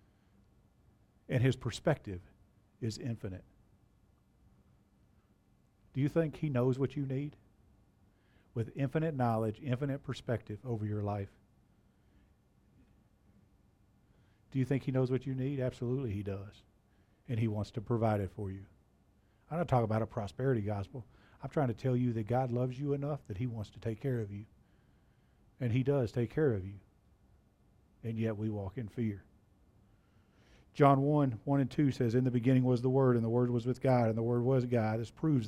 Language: English